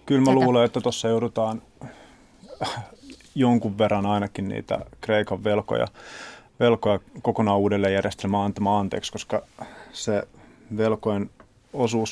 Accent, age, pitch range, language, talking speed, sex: native, 30-49, 105-125 Hz, Finnish, 105 wpm, male